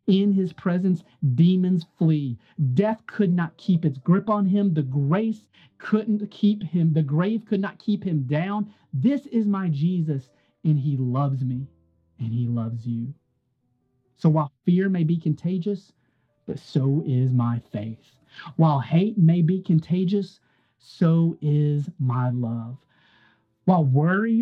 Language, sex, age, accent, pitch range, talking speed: English, male, 30-49, American, 125-175 Hz, 145 wpm